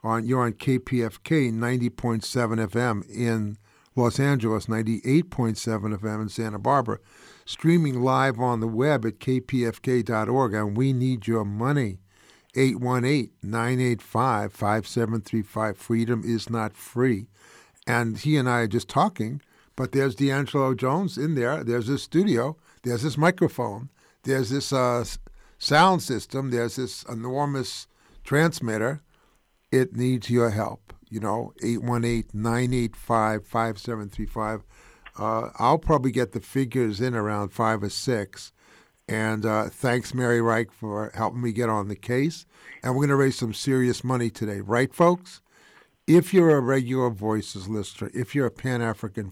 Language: English